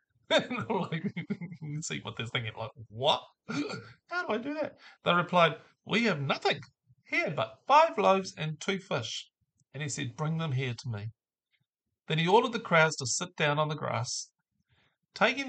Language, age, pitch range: English, 40-59, 125-165 Hz